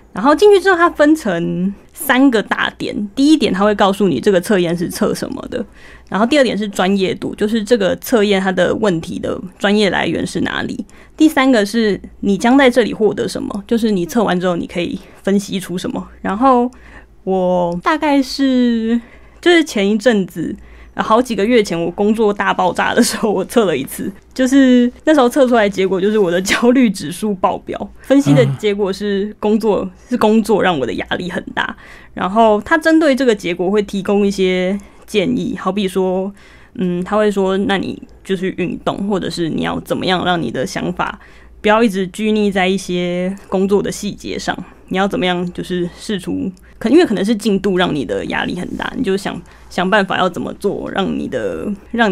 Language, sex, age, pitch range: Chinese, female, 20-39, 185-245 Hz